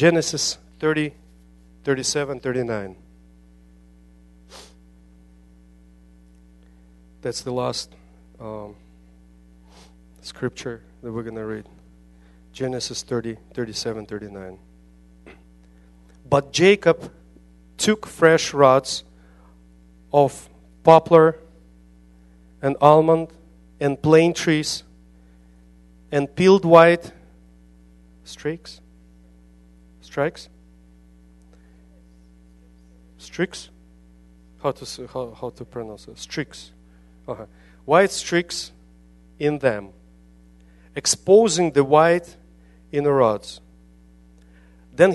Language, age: English, 40-59